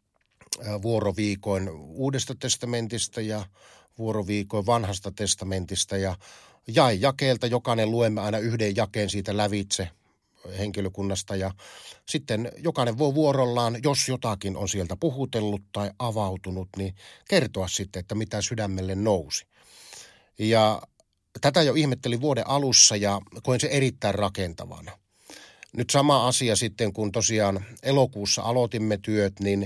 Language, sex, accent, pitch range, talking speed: Finnish, male, native, 100-125 Hz, 115 wpm